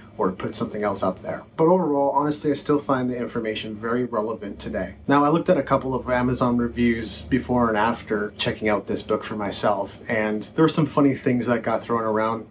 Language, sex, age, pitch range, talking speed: English, male, 30-49, 110-135 Hz, 215 wpm